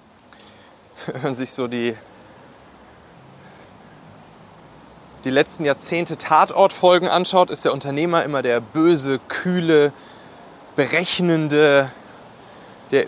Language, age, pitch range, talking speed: German, 30-49, 115-165 Hz, 85 wpm